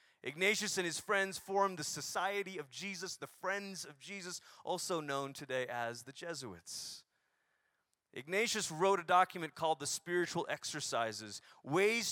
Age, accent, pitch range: 30-49, American, 140-195 Hz